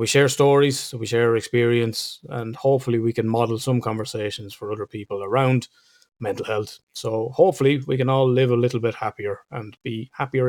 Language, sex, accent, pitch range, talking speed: English, male, Irish, 110-140 Hz, 185 wpm